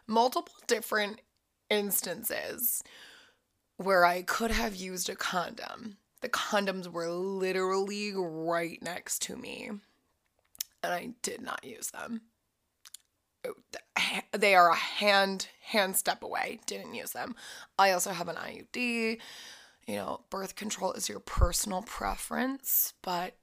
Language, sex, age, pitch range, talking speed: English, female, 20-39, 180-235 Hz, 125 wpm